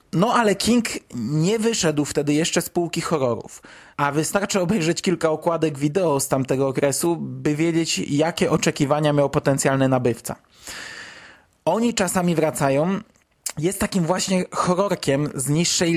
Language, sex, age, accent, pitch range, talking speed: Polish, male, 20-39, native, 150-195 Hz, 130 wpm